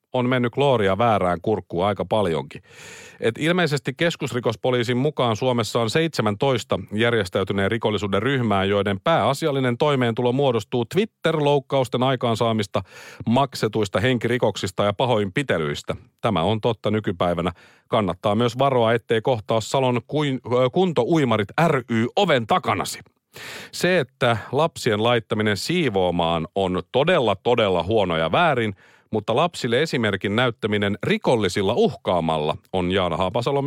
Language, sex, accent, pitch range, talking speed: Finnish, male, native, 100-135 Hz, 110 wpm